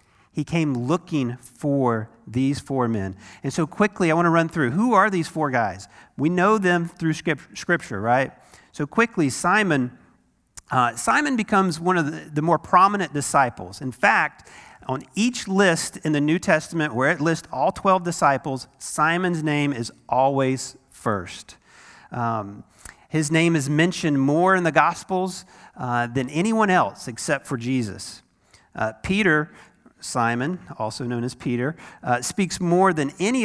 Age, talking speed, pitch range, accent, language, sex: 40-59, 155 wpm, 130-190 Hz, American, English, male